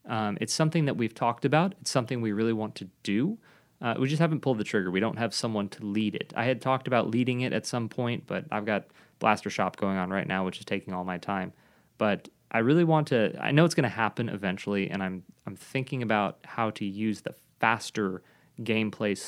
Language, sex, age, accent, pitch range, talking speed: English, male, 20-39, American, 100-130 Hz, 235 wpm